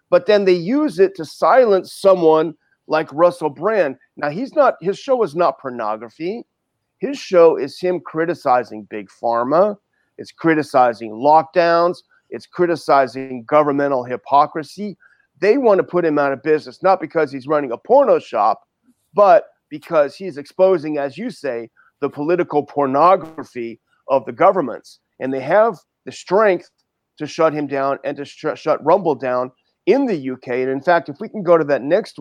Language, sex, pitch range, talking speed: English, male, 140-185 Hz, 165 wpm